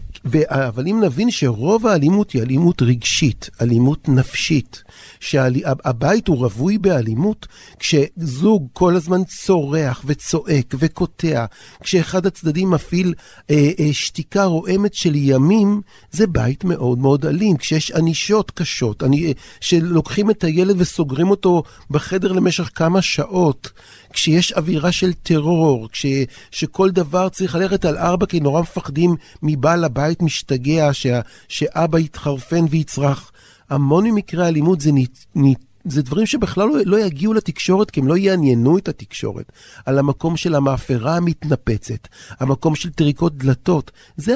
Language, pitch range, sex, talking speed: Hebrew, 130-180 Hz, male, 135 wpm